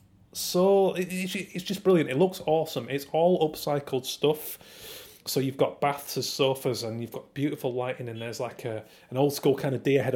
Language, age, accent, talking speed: English, 30-49, British, 195 wpm